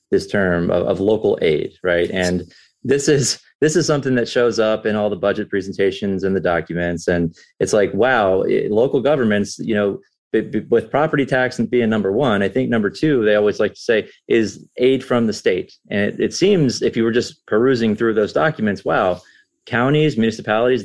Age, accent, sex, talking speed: 30-49, American, male, 200 wpm